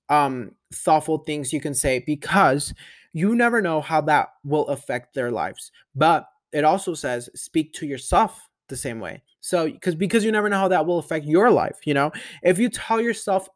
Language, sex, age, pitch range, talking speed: English, male, 20-39, 135-175 Hz, 195 wpm